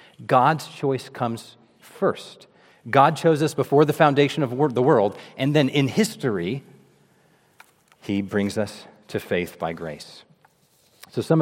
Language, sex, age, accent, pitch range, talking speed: English, male, 40-59, American, 110-135 Hz, 135 wpm